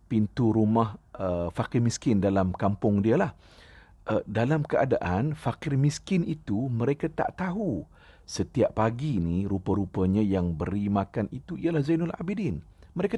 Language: Malay